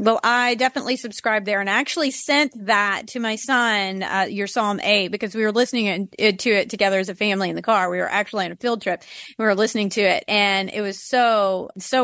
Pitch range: 210-285 Hz